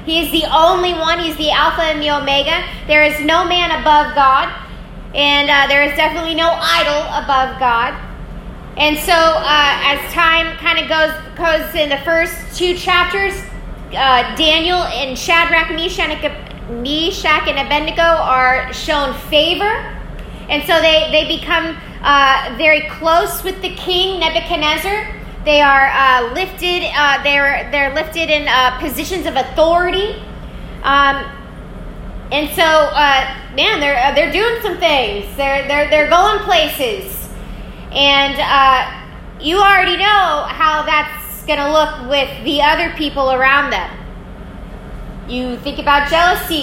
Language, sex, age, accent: English, female, 20-39, American